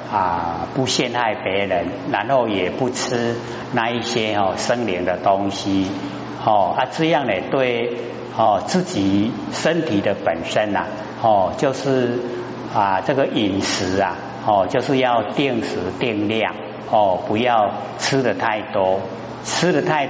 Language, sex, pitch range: Chinese, male, 100-130 Hz